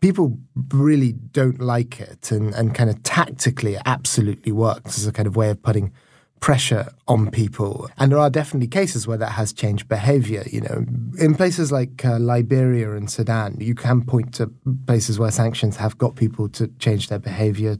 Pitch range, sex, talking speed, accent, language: 110-125 Hz, male, 185 wpm, British, English